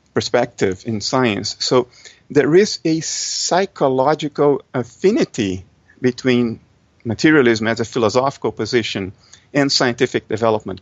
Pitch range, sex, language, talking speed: 110-140 Hz, male, English, 100 wpm